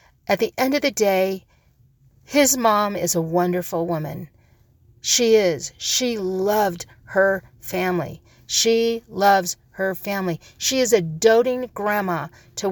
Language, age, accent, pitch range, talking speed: English, 50-69, American, 160-220 Hz, 130 wpm